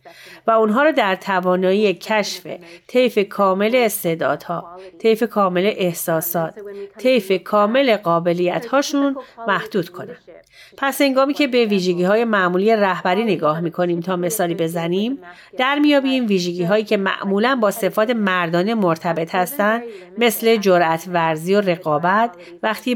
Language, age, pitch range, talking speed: Persian, 30-49, 175-220 Hz, 125 wpm